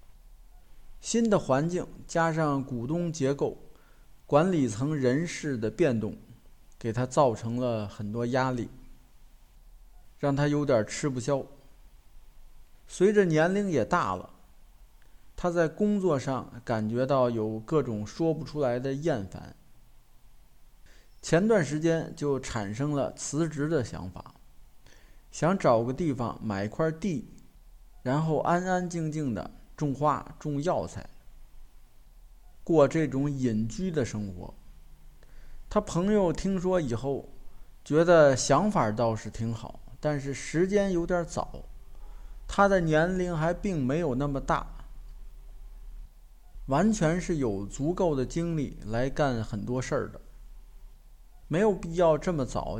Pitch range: 115-165 Hz